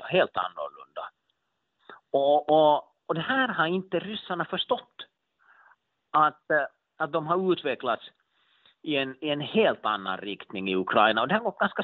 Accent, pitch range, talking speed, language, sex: Finnish, 125-180 Hz, 150 wpm, Swedish, male